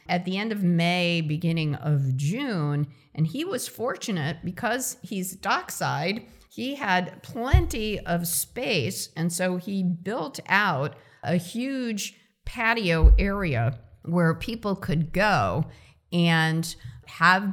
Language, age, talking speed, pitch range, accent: English, 50-69, 120 wpm, 160-195 Hz, American